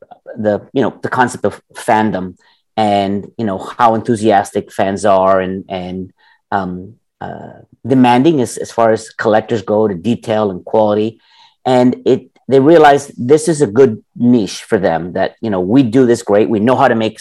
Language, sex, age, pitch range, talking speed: English, male, 30-49, 105-130 Hz, 180 wpm